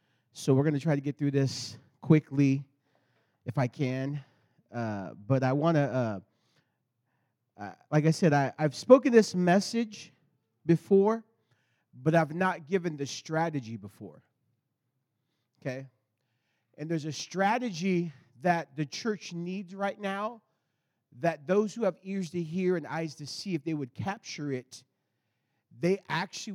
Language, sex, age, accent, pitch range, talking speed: English, male, 40-59, American, 135-225 Hz, 145 wpm